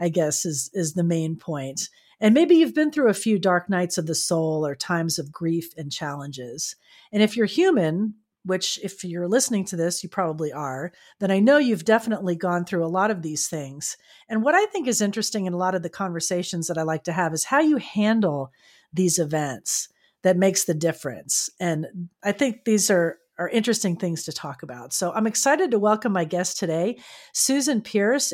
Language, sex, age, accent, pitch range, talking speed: English, female, 40-59, American, 170-215 Hz, 210 wpm